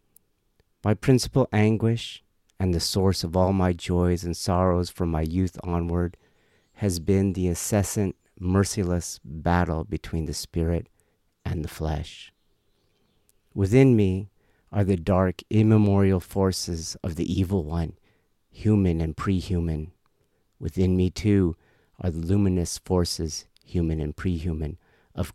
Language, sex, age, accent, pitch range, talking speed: English, male, 50-69, American, 85-105 Hz, 125 wpm